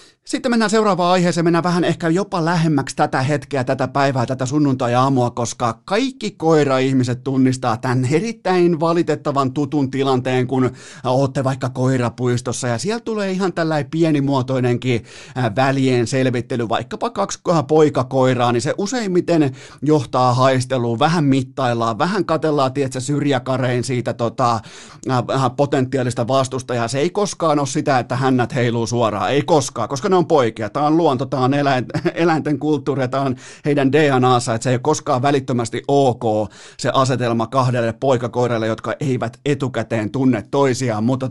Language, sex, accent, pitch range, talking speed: Finnish, male, native, 125-150 Hz, 140 wpm